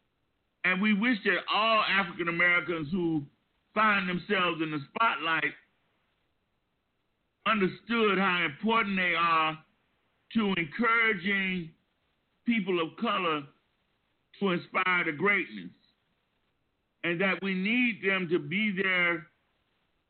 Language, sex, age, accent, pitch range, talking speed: English, male, 50-69, American, 170-210 Hz, 105 wpm